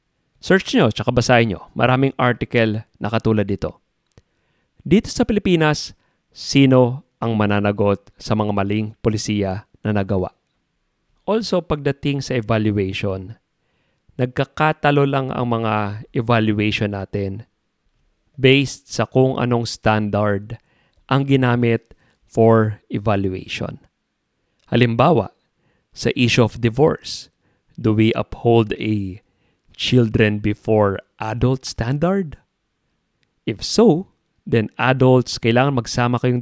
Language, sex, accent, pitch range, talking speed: English, male, Filipino, 105-125 Hz, 100 wpm